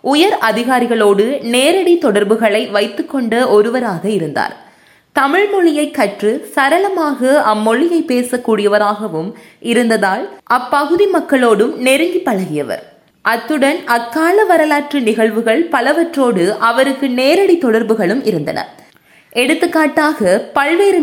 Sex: female